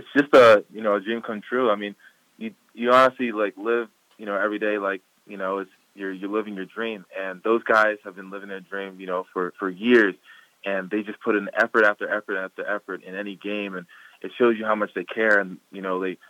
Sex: male